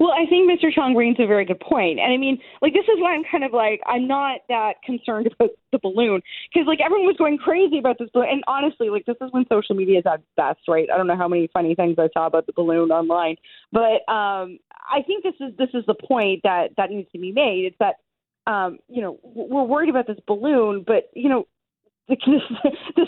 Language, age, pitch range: English, 20-39, 190-270 Hz